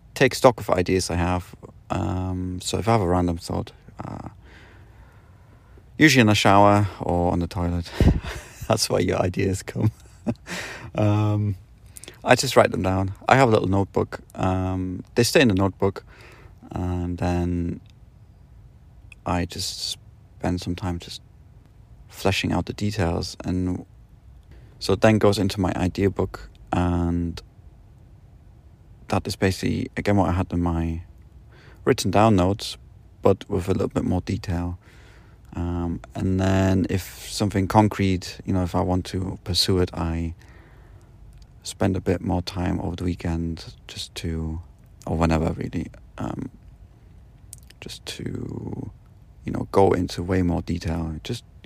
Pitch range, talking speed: 85-105 Hz, 145 wpm